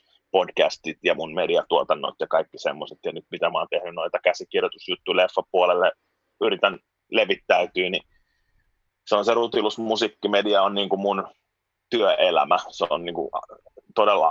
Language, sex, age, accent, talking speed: Finnish, male, 30-49, native, 135 wpm